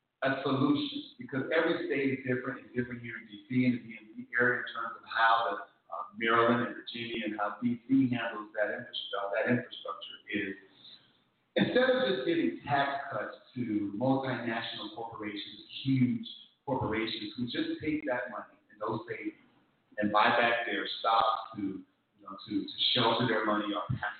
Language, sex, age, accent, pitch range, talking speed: English, male, 40-59, American, 105-130 Hz, 170 wpm